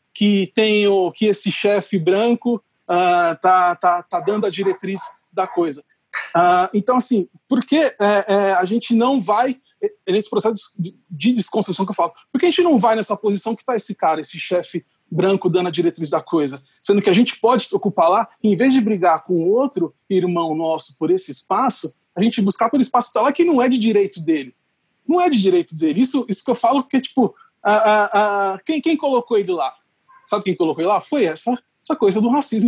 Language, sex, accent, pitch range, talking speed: Portuguese, male, Brazilian, 185-245 Hz, 215 wpm